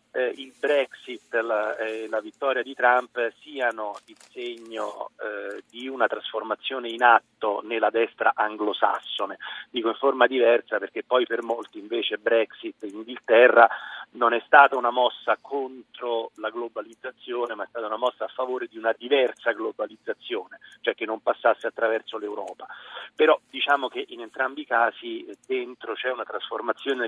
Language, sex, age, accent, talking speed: Italian, male, 40-59, native, 150 wpm